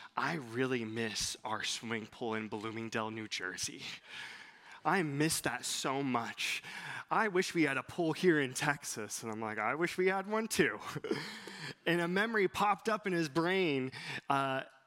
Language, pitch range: English, 115-170 Hz